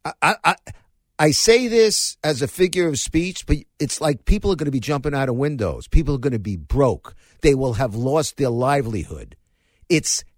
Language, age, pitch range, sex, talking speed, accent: English, 50-69, 85-140 Hz, male, 200 wpm, American